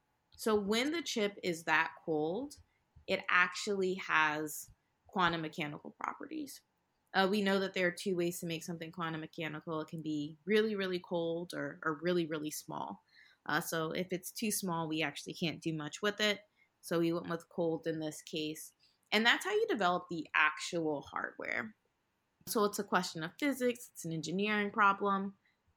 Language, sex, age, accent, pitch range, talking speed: English, female, 20-39, American, 160-205 Hz, 175 wpm